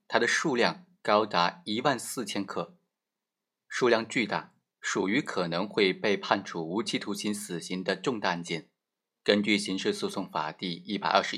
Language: Chinese